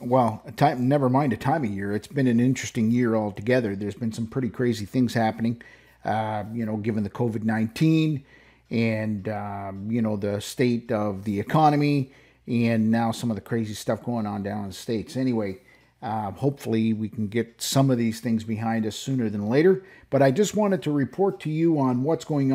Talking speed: 200 wpm